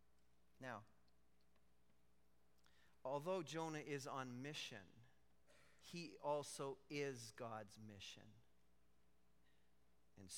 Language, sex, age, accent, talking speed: English, male, 40-59, American, 70 wpm